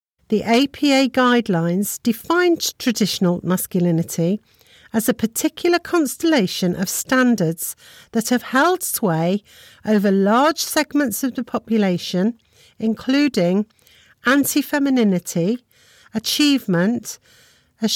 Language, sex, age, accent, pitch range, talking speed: English, female, 50-69, British, 190-275 Hz, 85 wpm